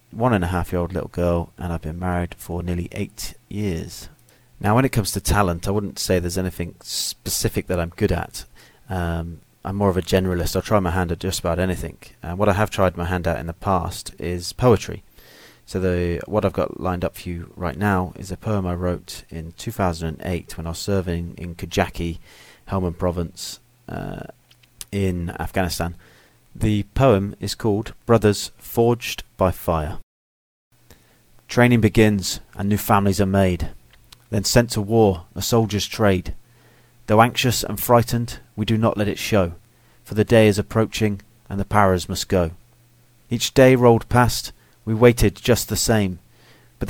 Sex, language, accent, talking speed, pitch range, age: male, English, British, 180 wpm, 90-115 Hz, 30-49